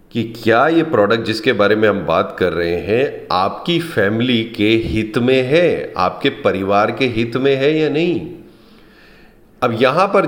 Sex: male